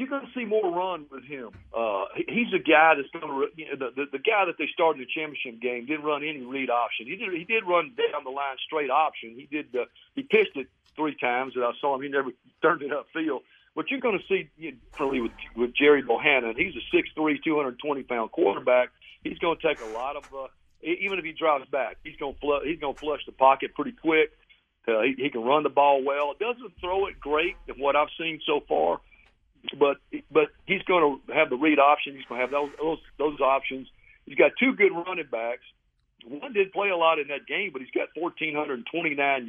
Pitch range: 130-170 Hz